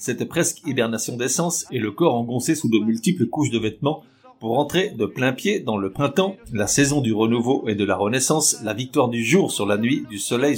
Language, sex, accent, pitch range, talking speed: French, male, French, 115-155 Hz, 220 wpm